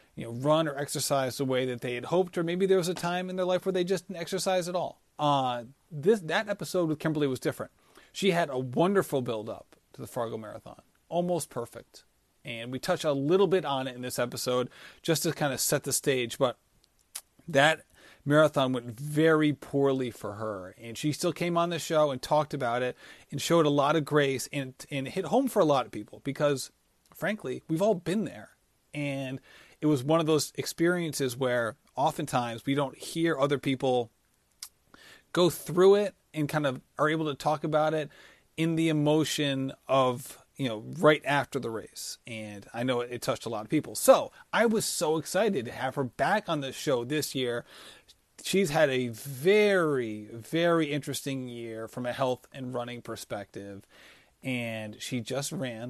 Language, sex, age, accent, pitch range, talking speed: English, male, 30-49, American, 125-165 Hz, 195 wpm